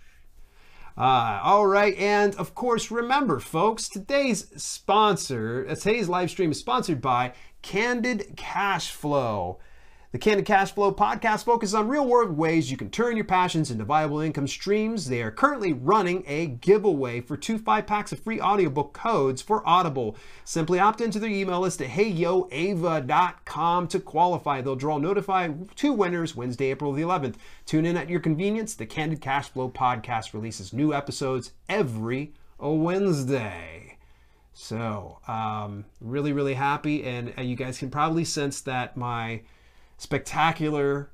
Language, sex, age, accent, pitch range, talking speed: English, male, 30-49, American, 125-180 Hz, 145 wpm